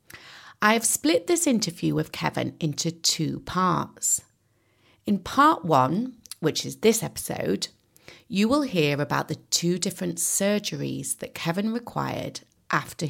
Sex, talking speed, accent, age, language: female, 135 wpm, British, 30-49, English